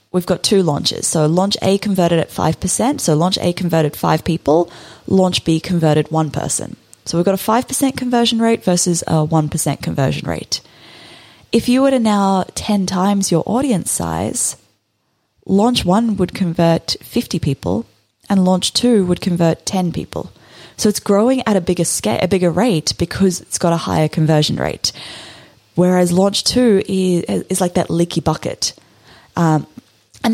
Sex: female